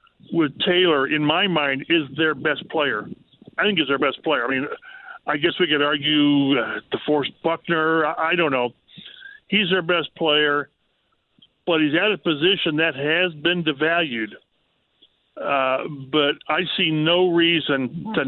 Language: English